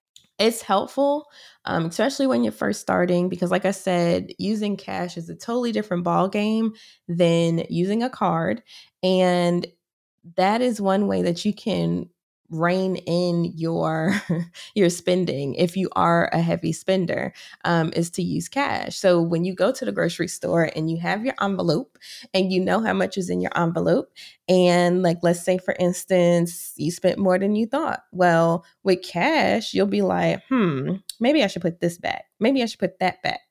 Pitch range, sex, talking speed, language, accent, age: 170-225 Hz, female, 180 wpm, English, American, 20-39